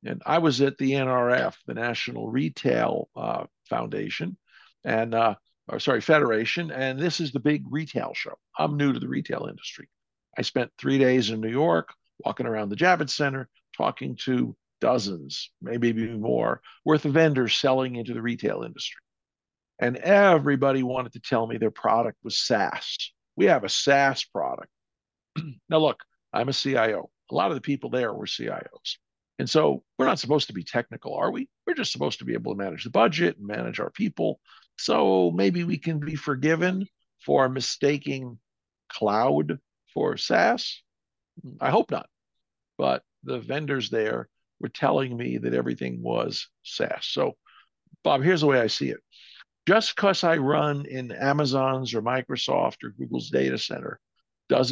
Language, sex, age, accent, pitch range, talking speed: English, male, 50-69, American, 115-150 Hz, 165 wpm